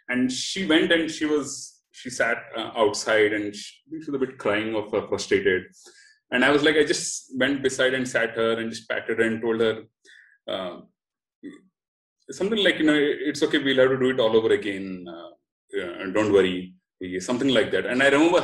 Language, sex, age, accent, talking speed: English, male, 30-49, Indian, 200 wpm